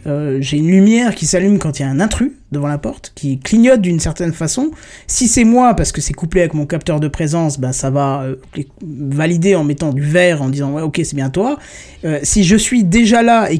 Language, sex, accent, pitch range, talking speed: French, male, French, 145-190 Hz, 245 wpm